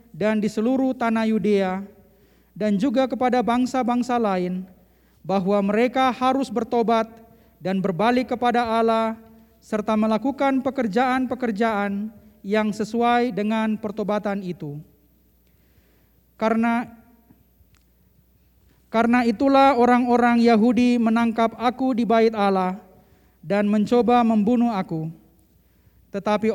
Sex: male